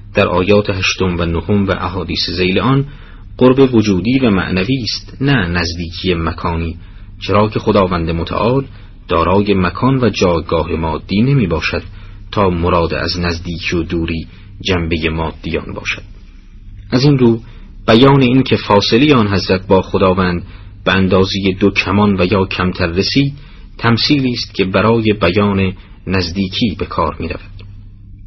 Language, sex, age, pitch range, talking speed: Persian, male, 40-59, 95-105 Hz, 140 wpm